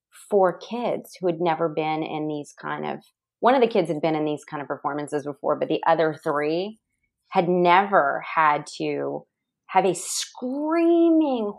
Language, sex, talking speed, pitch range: English, female, 170 wpm, 165-225 Hz